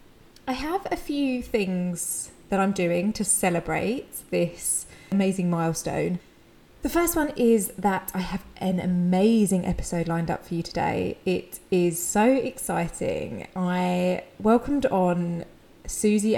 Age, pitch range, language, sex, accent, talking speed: 20-39, 175-220 Hz, English, female, British, 130 wpm